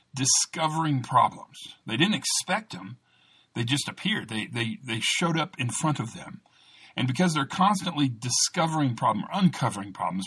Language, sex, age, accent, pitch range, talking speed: English, male, 50-69, American, 115-155 Hz, 150 wpm